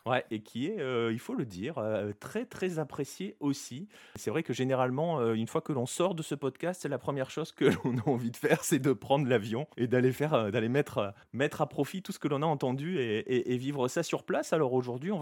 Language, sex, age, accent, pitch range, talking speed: French, male, 30-49, French, 115-155 Hz, 260 wpm